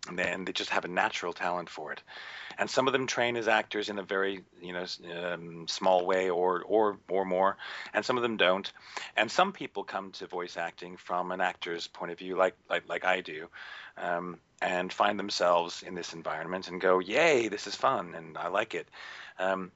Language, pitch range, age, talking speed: English, 90-105 Hz, 40-59, 215 wpm